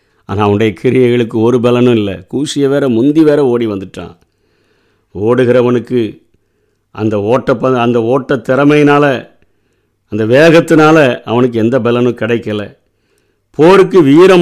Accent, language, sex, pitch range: native, Tamil, male, 110-145 Hz